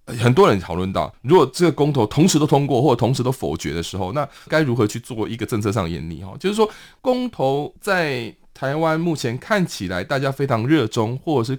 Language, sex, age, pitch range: Chinese, male, 20-39, 105-160 Hz